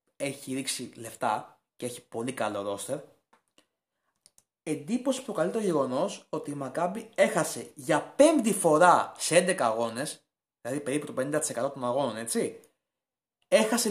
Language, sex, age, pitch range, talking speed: Greek, male, 20-39, 155-255 Hz, 130 wpm